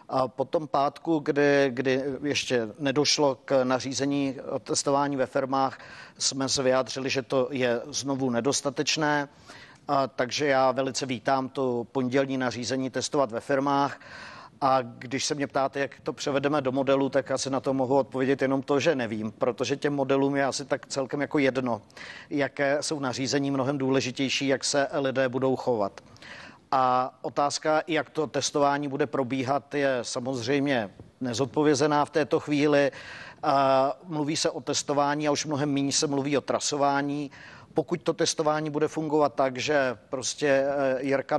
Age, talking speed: 50-69, 150 wpm